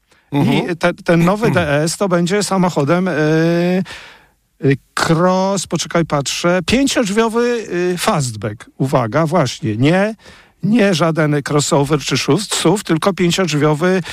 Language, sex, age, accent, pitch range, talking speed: Polish, male, 50-69, native, 145-185 Hz, 110 wpm